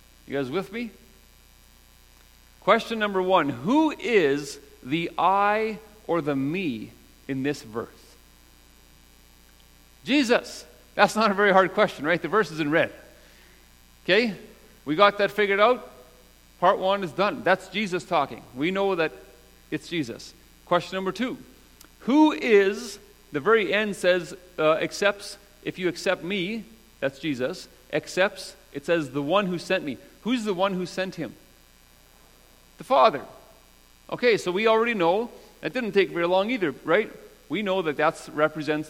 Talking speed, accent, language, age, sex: 150 wpm, American, English, 40-59, male